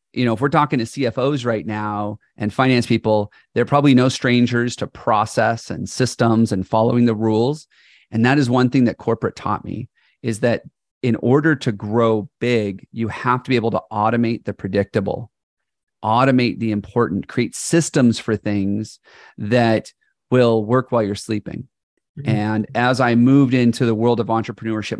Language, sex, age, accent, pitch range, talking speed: English, male, 30-49, American, 110-135 Hz, 170 wpm